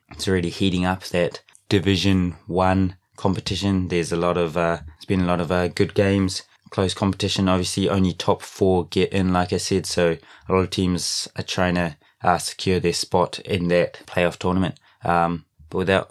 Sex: male